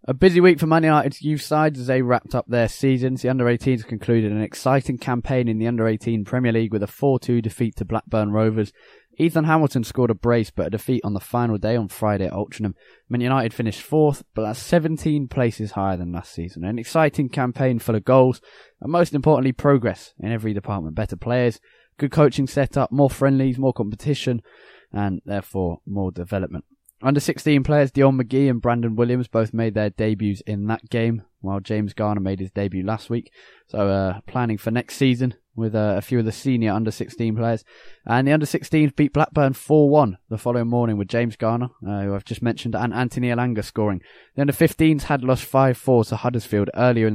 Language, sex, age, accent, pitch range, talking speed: English, male, 20-39, British, 105-130 Hz, 195 wpm